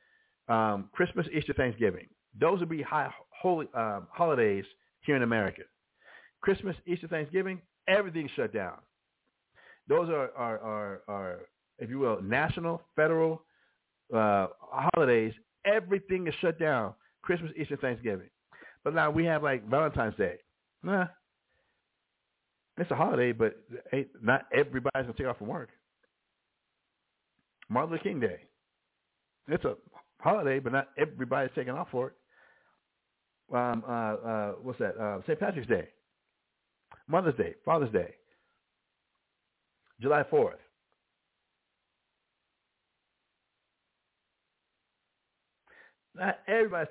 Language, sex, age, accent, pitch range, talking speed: English, male, 50-69, American, 125-185 Hz, 110 wpm